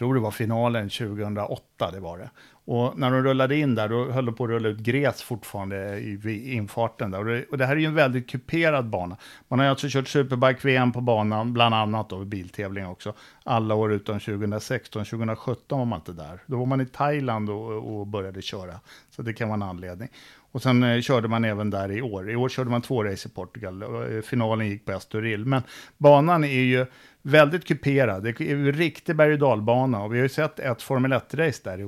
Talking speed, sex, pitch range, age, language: 215 wpm, male, 105-130 Hz, 50-69, Swedish